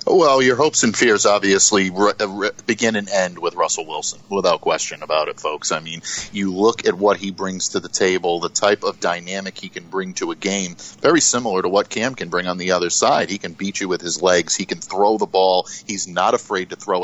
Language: English